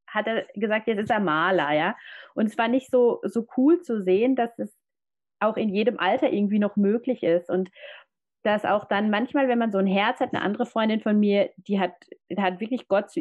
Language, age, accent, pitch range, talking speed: German, 30-49, German, 185-230 Hz, 225 wpm